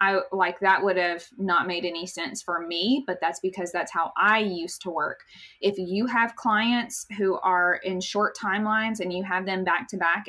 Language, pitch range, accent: English, 180-200 Hz, American